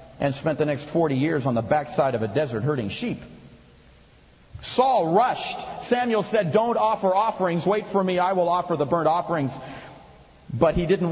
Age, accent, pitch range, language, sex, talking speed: 40-59, American, 135-195 Hz, English, male, 180 wpm